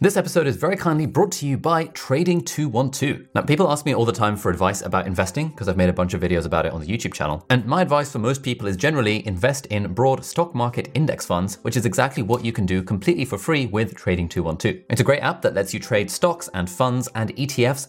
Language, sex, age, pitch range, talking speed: English, male, 20-39, 90-125 Hz, 250 wpm